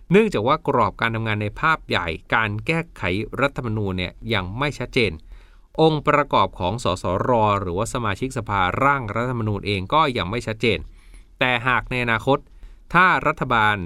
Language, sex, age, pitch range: Thai, male, 20-39, 100-135 Hz